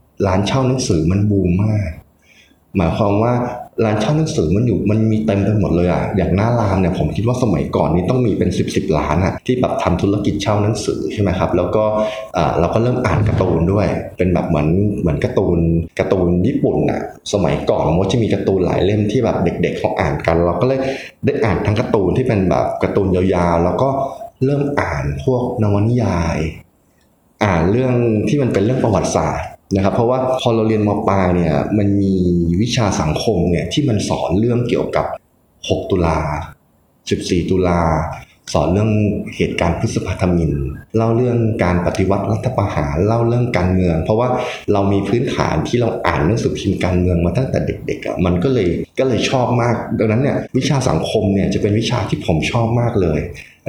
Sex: male